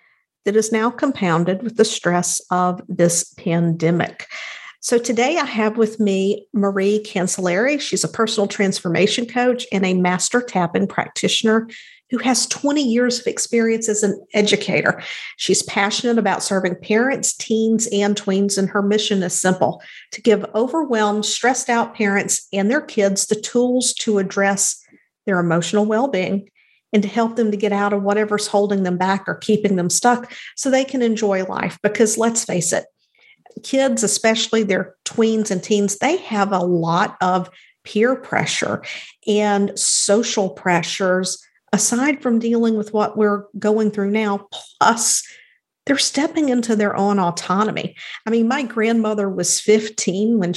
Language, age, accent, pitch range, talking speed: English, 50-69, American, 195-230 Hz, 155 wpm